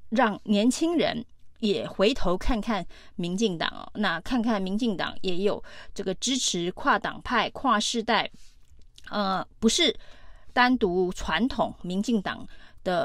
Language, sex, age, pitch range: Chinese, female, 30-49, 185-240 Hz